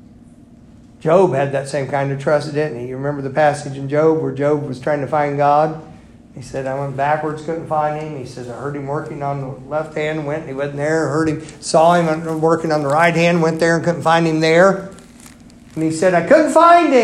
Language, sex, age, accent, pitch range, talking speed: English, male, 50-69, American, 135-165 Hz, 245 wpm